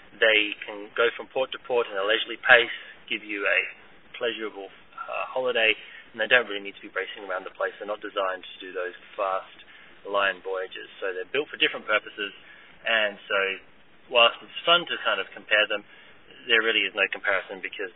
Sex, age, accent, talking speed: male, 30-49, Australian, 195 wpm